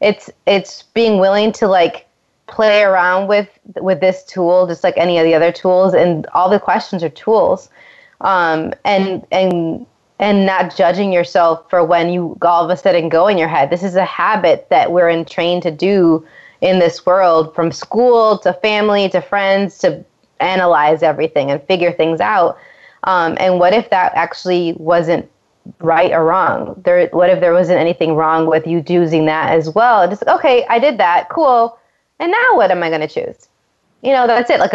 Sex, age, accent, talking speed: female, 20-39, American, 190 wpm